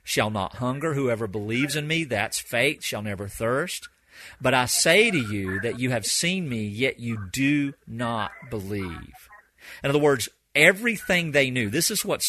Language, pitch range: English, 110-150 Hz